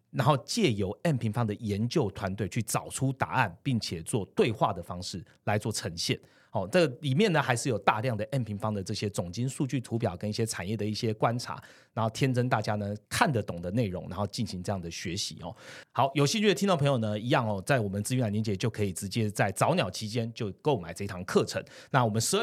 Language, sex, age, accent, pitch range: Chinese, male, 30-49, native, 105-140 Hz